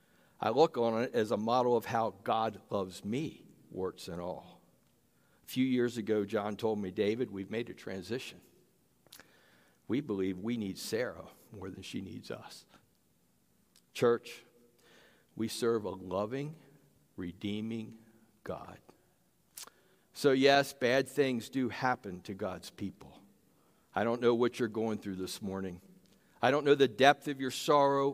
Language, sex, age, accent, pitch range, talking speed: English, male, 60-79, American, 100-130 Hz, 150 wpm